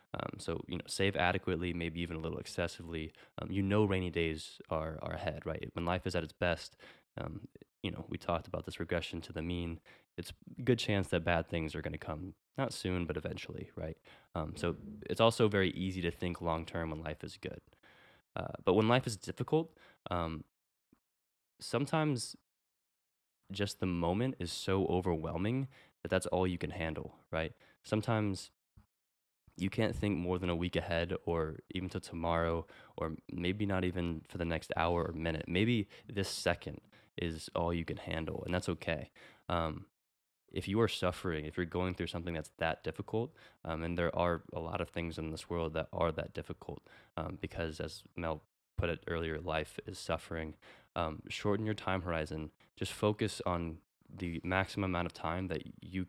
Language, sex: English, male